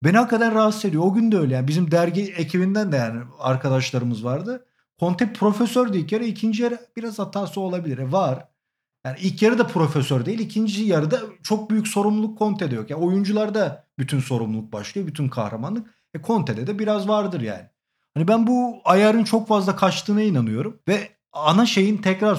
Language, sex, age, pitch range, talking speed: Turkish, male, 40-59, 150-210 Hz, 180 wpm